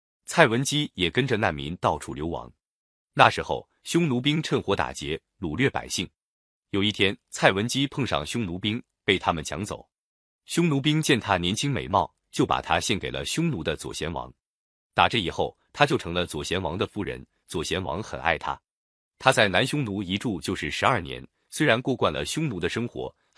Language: Chinese